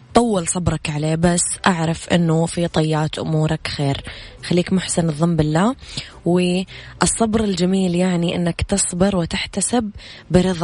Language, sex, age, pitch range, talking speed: Arabic, female, 20-39, 150-180 Hz, 120 wpm